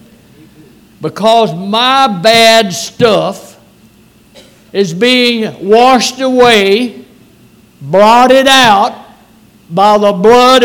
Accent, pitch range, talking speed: American, 225-260 Hz, 80 wpm